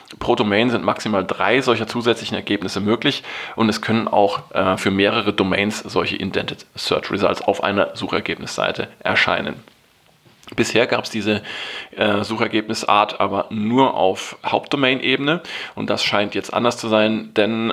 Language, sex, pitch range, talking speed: German, male, 100-115 Hz, 140 wpm